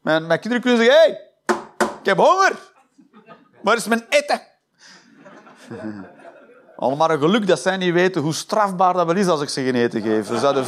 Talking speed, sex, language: 190 wpm, male, Dutch